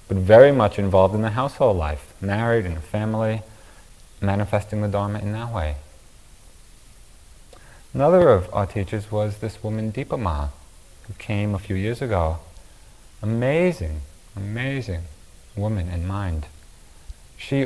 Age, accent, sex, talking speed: 40-59, American, male, 130 wpm